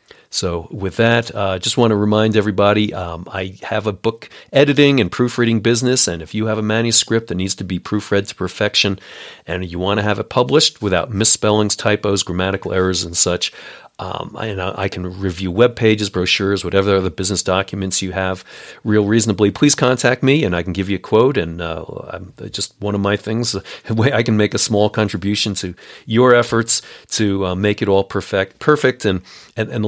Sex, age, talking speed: male, 40-59, 195 wpm